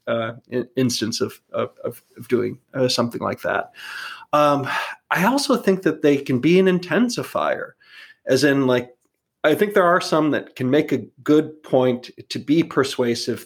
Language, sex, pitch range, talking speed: English, male, 125-155 Hz, 165 wpm